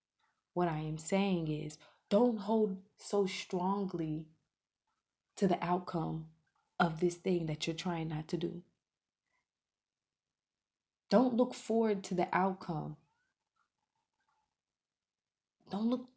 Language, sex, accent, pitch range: English, female, American, 165-225 Hz